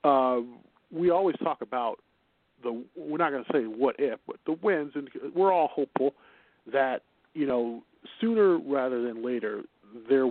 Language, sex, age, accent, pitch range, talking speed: English, male, 40-59, American, 120-165 Hz, 165 wpm